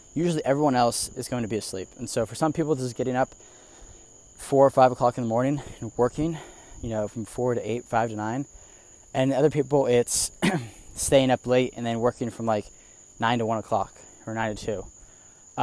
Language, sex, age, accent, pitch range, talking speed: English, male, 20-39, American, 110-135 Hz, 205 wpm